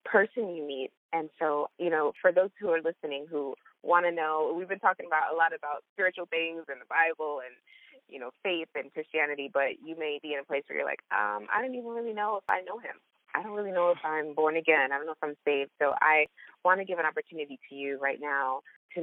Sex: female